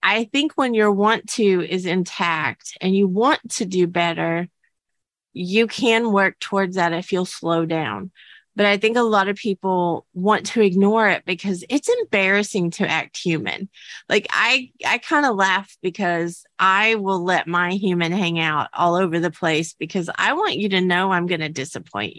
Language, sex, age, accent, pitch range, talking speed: English, female, 30-49, American, 185-235 Hz, 180 wpm